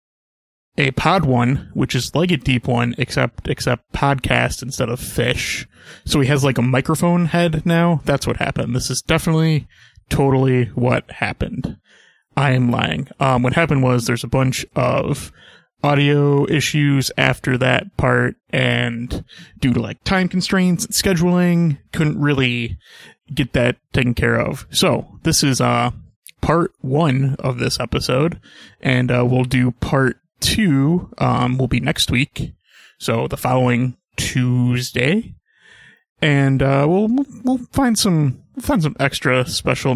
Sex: male